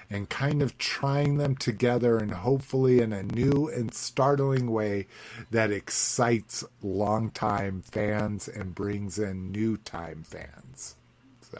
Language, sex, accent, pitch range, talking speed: English, male, American, 110-130 Hz, 130 wpm